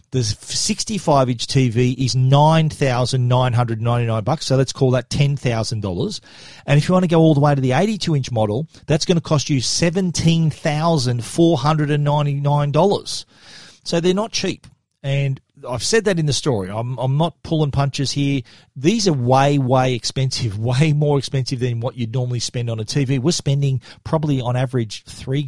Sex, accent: male, Australian